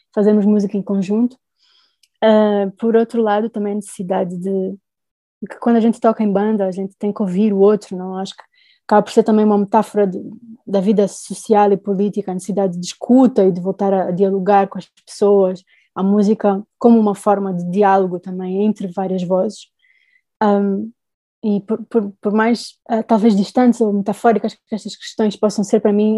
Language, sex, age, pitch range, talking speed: Portuguese, female, 20-39, 195-225 Hz, 190 wpm